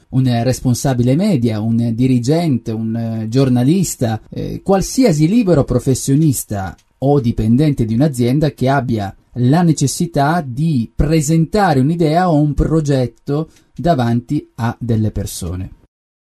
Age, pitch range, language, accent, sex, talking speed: 30-49, 115-155 Hz, Italian, native, male, 105 wpm